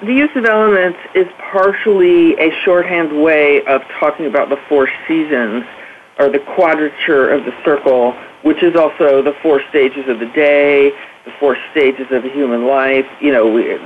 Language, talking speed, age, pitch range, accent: English, 165 wpm, 50-69, 135-170 Hz, American